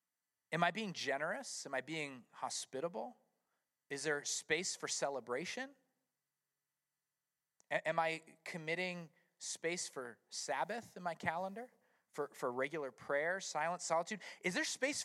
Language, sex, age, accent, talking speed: English, male, 30-49, American, 130 wpm